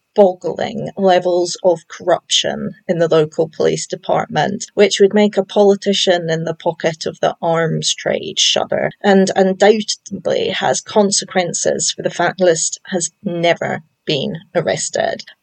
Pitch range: 170-210 Hz